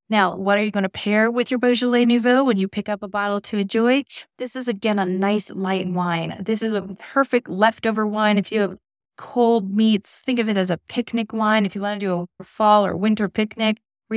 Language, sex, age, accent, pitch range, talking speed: English, female, 30-49, American, 195-235 Hz, 235 wpm